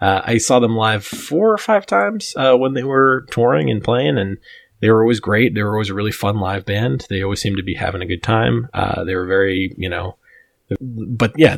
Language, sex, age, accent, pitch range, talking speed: English, male, 20-39, American, 95-115 Hz, 240 wpm